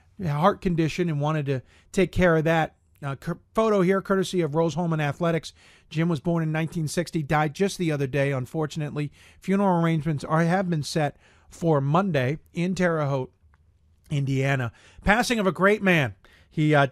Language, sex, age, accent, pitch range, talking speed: English, male, 50-69, American, 140-180 Hz, 165 wpm